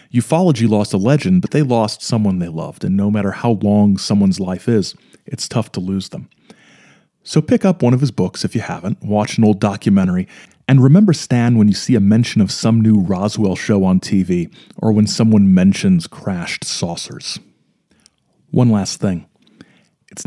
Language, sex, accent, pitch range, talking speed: English, male, American, 100-150 Hz, 185 wpm